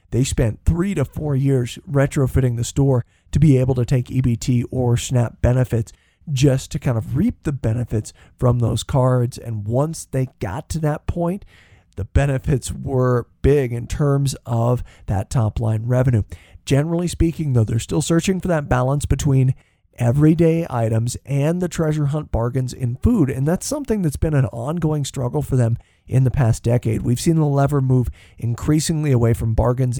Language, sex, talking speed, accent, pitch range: English, male, 175 wpm, American, 115-140 Hz